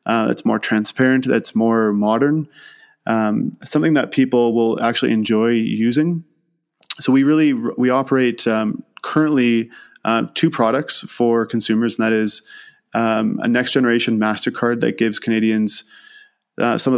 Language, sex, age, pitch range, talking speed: English, male, 20-39, 110-130 Hz, 145 wpm